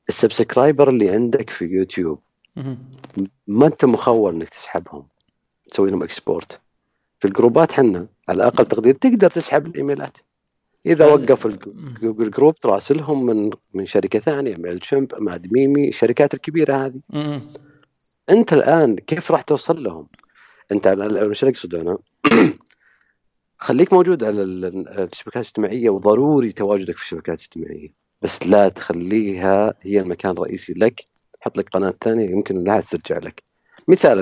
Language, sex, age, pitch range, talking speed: Arabic, male, 50-69, 90-140 Hz, 130 wpm